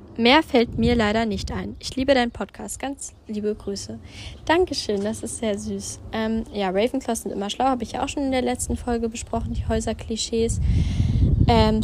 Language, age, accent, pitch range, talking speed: German, 10-29, German, 200-225 Hz, 190 wpm